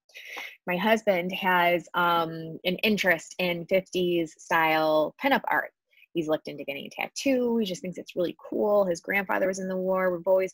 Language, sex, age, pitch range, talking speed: English, female, 20-39, 175-205 Hz, 175 wpm